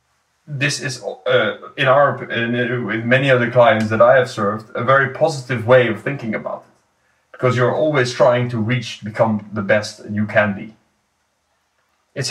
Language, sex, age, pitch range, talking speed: English, male, 30-49, 115-130 Hz, 170 wpm